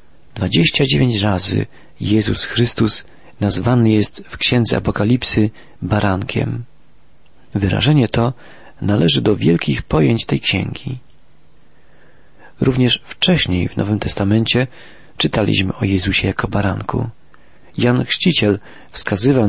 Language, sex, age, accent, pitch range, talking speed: Polish, male, 40-59, native, 100-130 Hz, 95 wpm